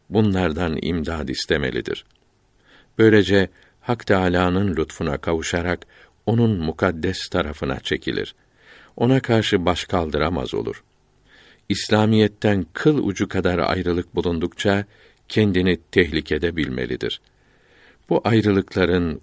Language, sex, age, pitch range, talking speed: Turkish, male, 50-69, 85-105 Hz, 85 wpm